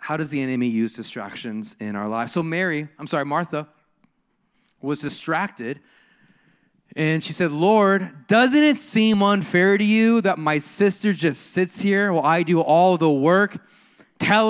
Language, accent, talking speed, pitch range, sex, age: English, American, 160 wpm, 150-230 Hz, male, 20-39